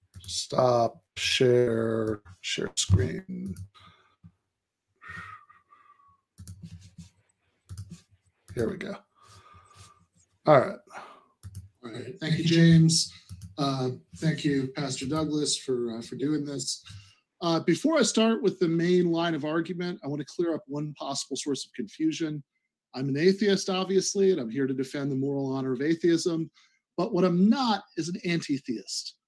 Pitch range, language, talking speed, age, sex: 130-175 Hz, English, 135 wpm, 40-59, male